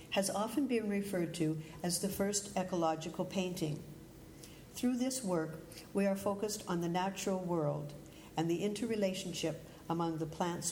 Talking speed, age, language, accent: 145 wpm, 60-79, English, American